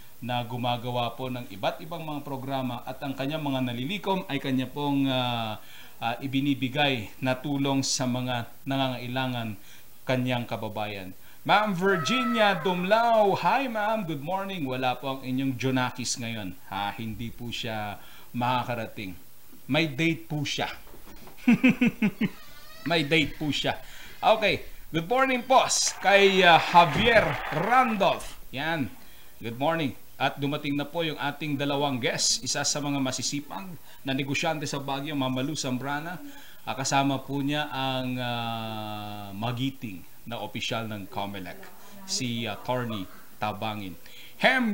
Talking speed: 130 wpm